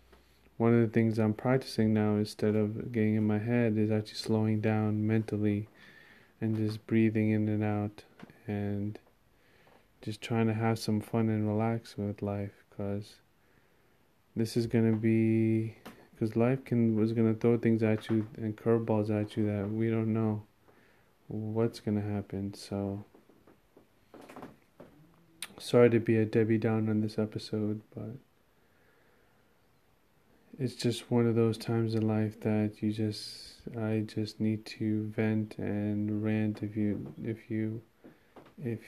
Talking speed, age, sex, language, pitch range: 150 wpm, 20-39, male, English, 105-115 Hz